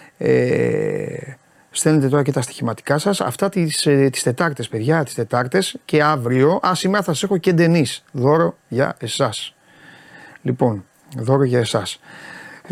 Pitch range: 130-175 Hz